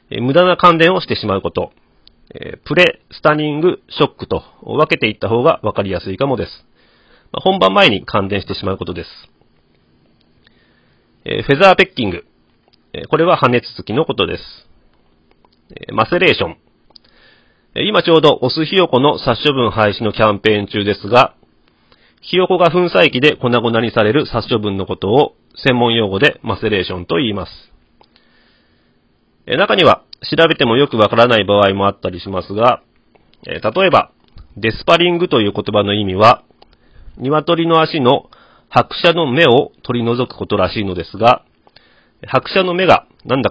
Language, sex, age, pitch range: Japanese, male, 40-59, 100-150 Hz